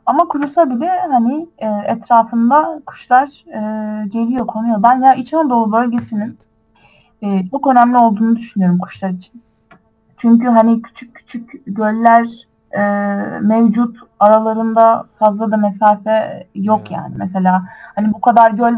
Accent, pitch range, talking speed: native, 205-240 Hz, 130 wpm